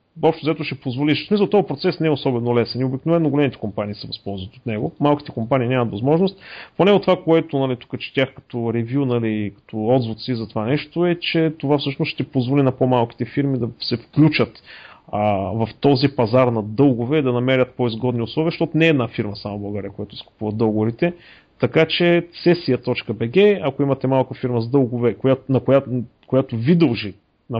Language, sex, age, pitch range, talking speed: Bulgarian, male, 40-59, 120-155 Hz, 185 wpm